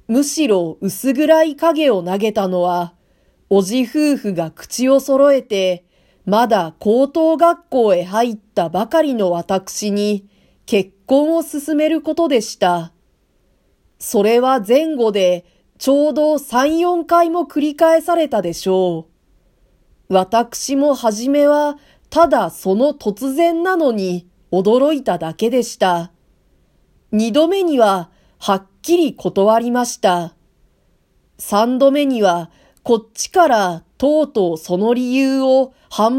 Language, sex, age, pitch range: Japanese, female, 40-59, 190-285 Hz